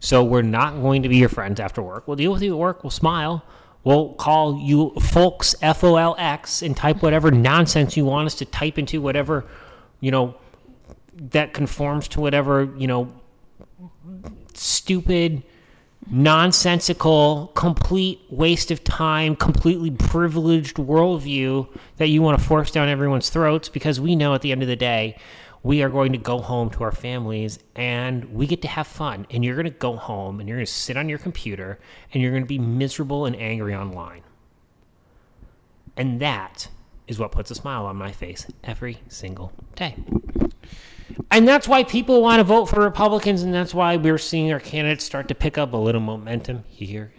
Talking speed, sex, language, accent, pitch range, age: 175 wpm, male, English, American, 115-155 Hz, 30-49